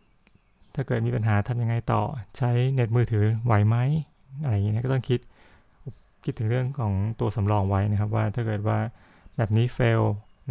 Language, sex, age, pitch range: Thai, male, 20-39, 105-120 Hz